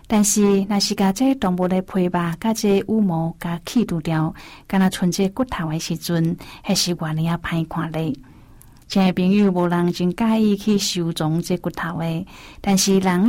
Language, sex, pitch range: Chinese, female, 165-195 Hz